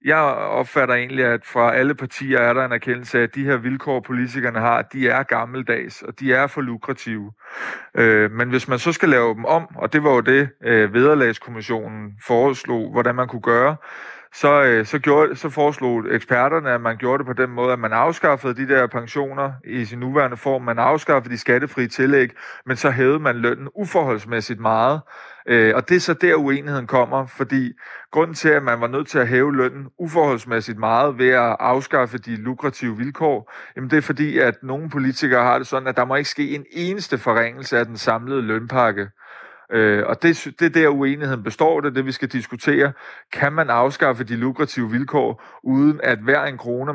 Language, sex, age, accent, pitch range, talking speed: Danish, male, 30-49, native, 120-140 Hz, 190 wpm